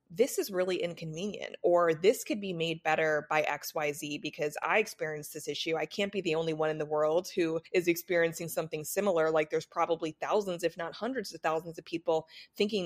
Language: English